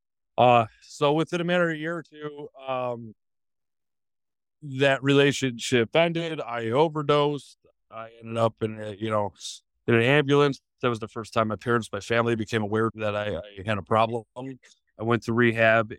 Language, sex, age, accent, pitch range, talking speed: English, male, 30-49, American, 105-120 Hz, 175 wpm